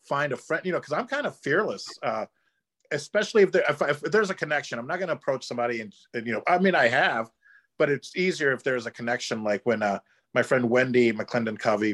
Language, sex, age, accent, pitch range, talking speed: English, male, 40-59, American, 110-160 Hz, 230 wpm